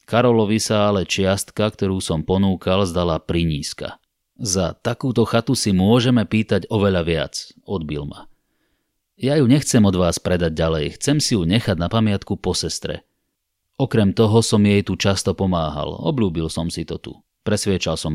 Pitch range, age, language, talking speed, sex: 85-115 Hz, 30-49, Slovak, 160 wpm, male